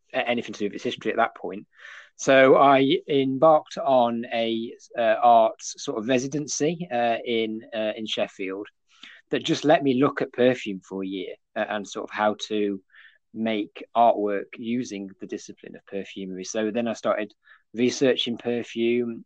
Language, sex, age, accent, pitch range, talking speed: English, male, 20-39, British, 105-125 Hz, 160 wpm